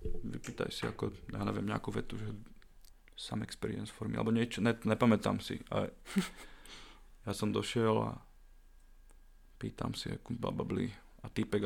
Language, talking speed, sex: Slovak, 150 wpm, male